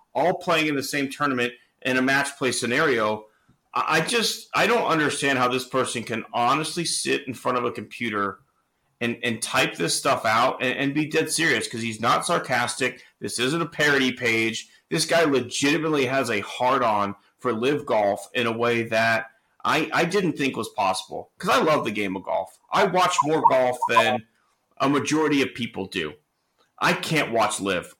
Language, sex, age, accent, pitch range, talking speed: English, male, 30-49, American, 115-150 Hz, 185 wpm